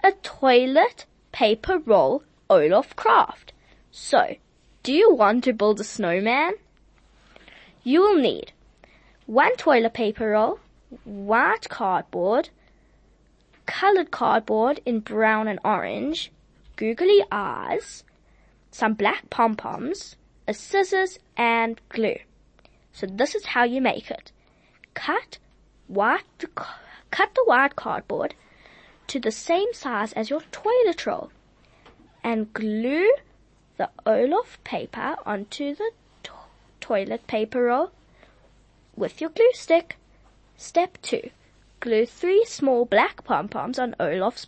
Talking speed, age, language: 110 wpm, 20-39, English